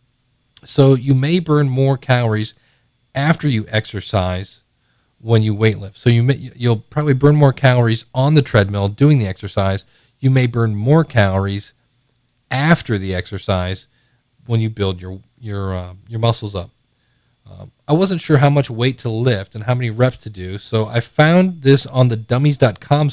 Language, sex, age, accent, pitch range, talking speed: English, male, 40-59, American, 110-130 Hz, 170 wpm